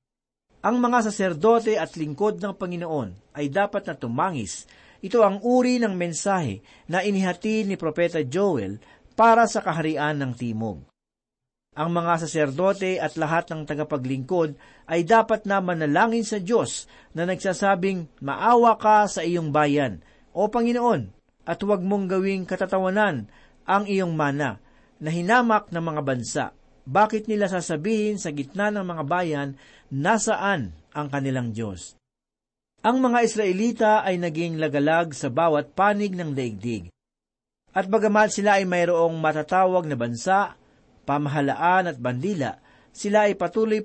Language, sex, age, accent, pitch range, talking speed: Filipino, male, 50-69, native, 150-210 Hz, 135 wpm